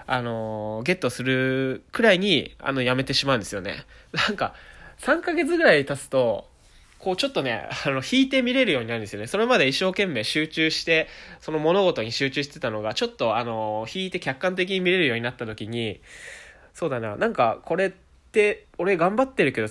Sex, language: male, Japanese